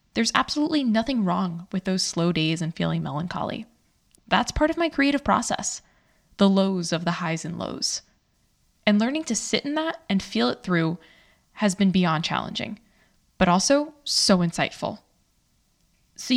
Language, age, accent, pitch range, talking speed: English, 10-29, American, 175-240 Hz, 160 wpm